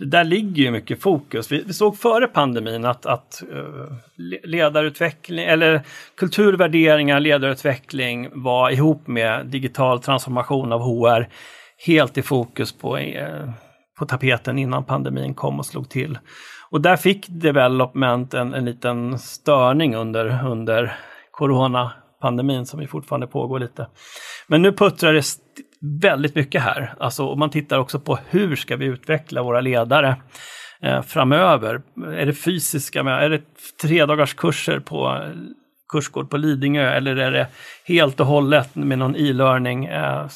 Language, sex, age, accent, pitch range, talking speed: English, male, 40-59, Swedish, 125-155 Hz, 140 wpm